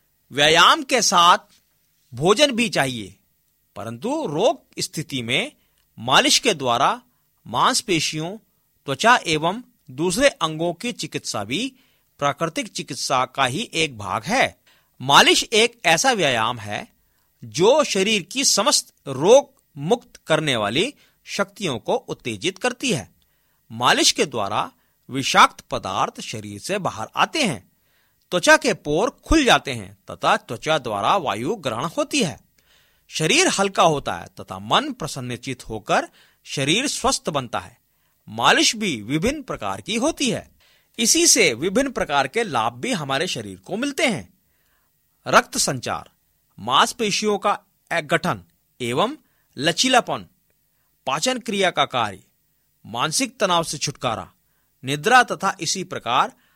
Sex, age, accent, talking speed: male, 50-69, native, 125 wpm